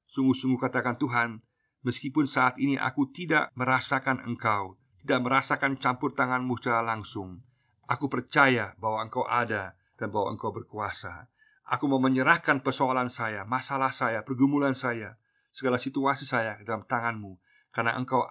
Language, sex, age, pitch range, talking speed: Indonesian, male, 50-69, 110-130 Hz, 135 wpm